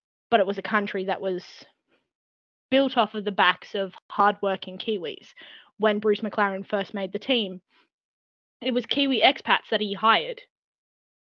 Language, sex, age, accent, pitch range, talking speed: English, female, 20-39, Australian, 200-240 Hz, 155 wpm